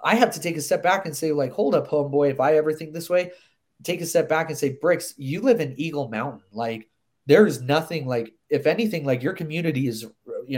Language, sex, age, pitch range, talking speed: English, male, 30-49, 125-165 Hz, 245 wpm